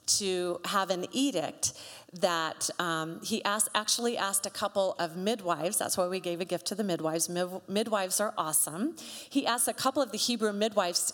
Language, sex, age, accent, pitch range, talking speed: English, female, 40-59, American, 170-210 Hz, 180 wpm